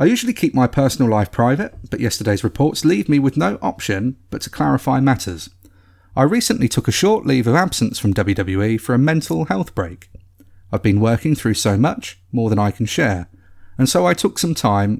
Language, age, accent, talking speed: English, 40-59, British, 205 wpm